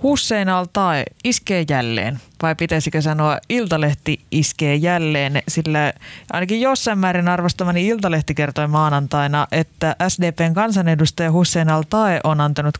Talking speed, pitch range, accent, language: 115 wpm, 150-180 Hz, native, Finnish